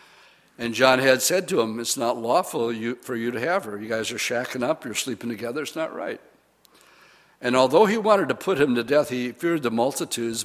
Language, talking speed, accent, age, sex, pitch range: English, 220 wpm, American, 60-79, male, 115-140 Hz